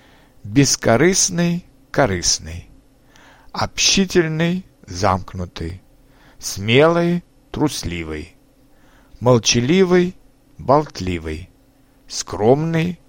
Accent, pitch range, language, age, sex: native, 105-150 Hz, Russian, 60-79, male